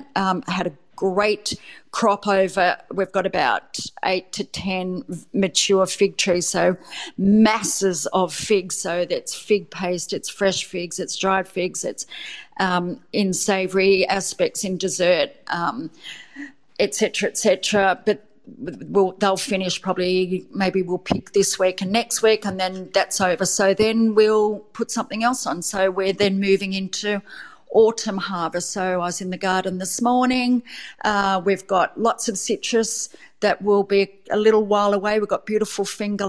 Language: English